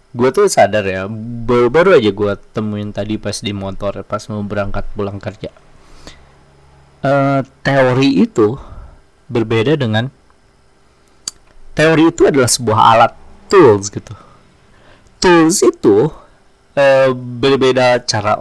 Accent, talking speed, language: native, 110 wpm, Indonesian